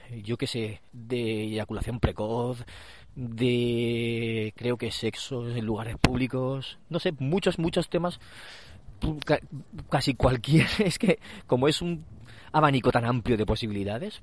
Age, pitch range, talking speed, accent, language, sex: 30-49, 105-135 Hz, 125 wpm, Spanish, Spanish, male